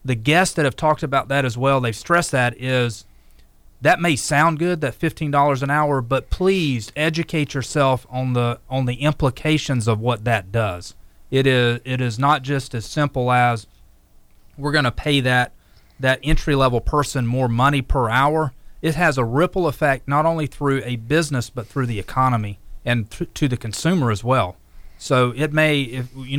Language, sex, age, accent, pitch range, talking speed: English, male, 30-49, American, 120-145 Hz, 185 wpm